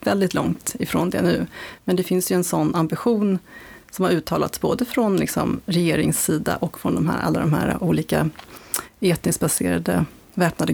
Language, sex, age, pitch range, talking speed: Swedish, female, 30-49, 160-190 Hz, 150 wpm